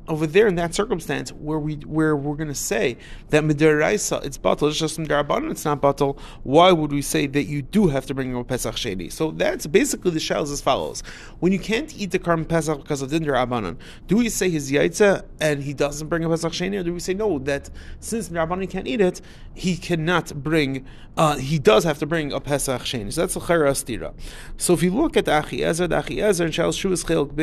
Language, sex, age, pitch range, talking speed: English, male, 30-49, 145-180 Hz, 225 wpm